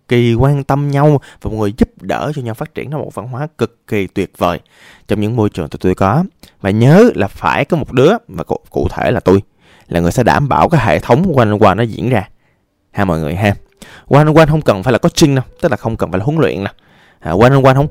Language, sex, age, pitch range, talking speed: Vietnamese, male, 20-39, 100-155 Hz, 255 wpm